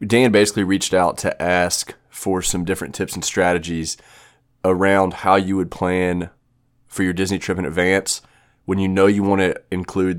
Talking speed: 175 wpm